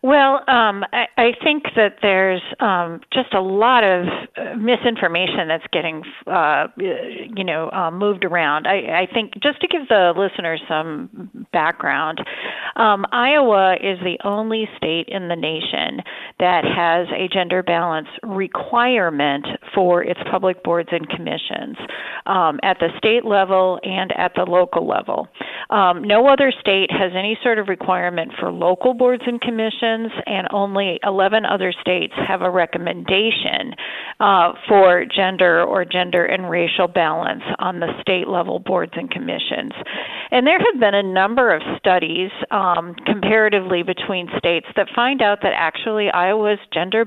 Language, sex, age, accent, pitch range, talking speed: English, female, 40-59, American, 180-225 Hz, 150 wpm